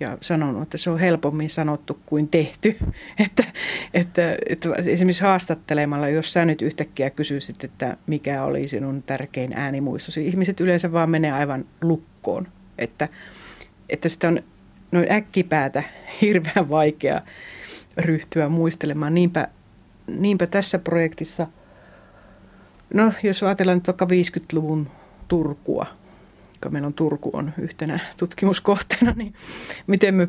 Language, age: Finnish, 30-49